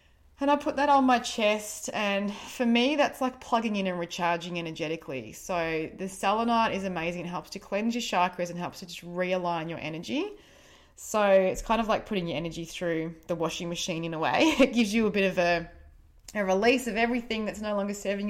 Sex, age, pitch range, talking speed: female, 20-39, 175-230 Hz, 215 wpm